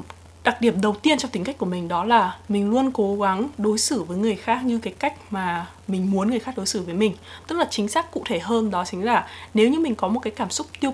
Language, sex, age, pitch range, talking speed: Vietnamese, female, 20-39, 195-240 Hz, 280 wpm